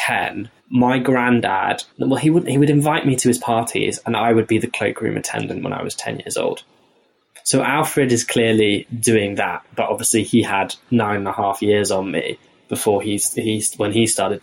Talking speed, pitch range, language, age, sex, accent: 205 wpm, 110-135 Hz, English, 10-29, male, British